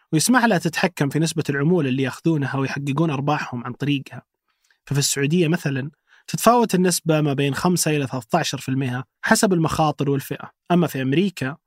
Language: Arabic